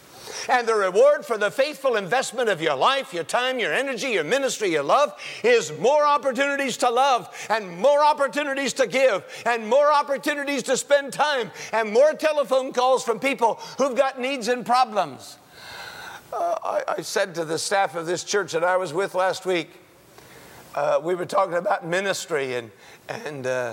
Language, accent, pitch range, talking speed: English, American, 160-265 Hz, 175 wpm